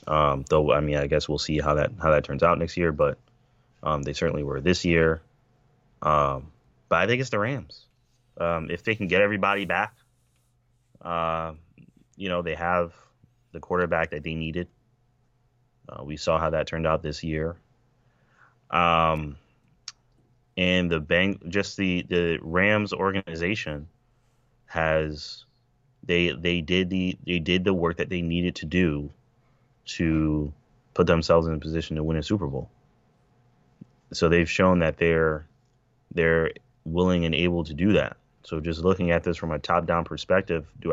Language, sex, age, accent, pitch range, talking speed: English, male, 30-49, American, 80-120 Hz, 165 wpm